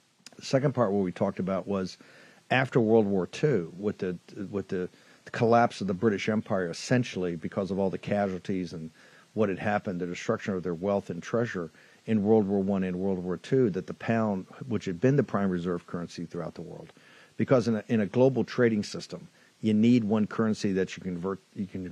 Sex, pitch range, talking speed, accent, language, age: male, 90-110 Hz, 205 wpm, American, English, 50-69